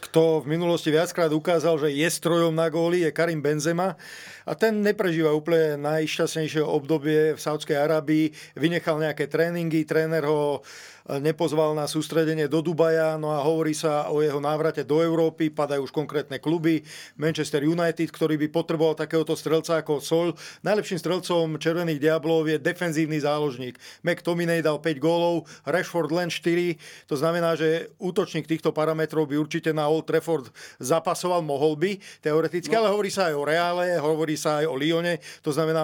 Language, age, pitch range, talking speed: Slovak, 40-59, 150-170 Hz, 150 wpm